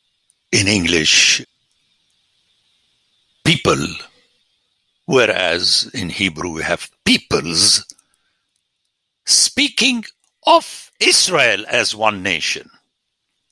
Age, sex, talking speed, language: 60-79, male, 65 wpm, English